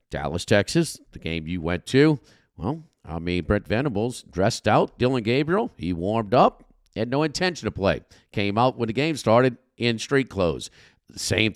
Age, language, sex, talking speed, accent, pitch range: 50-69, English, male, 165 wpm, American, 95-125 Hz